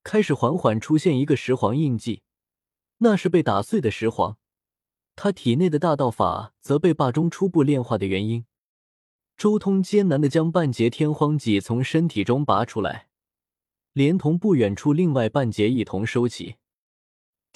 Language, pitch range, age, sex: Chinese, 110-170 Hz, 20-39, male